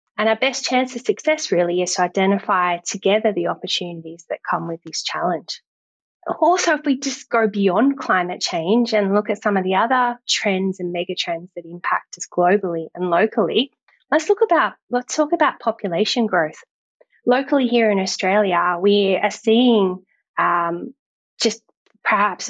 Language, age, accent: English, 20-39, Australian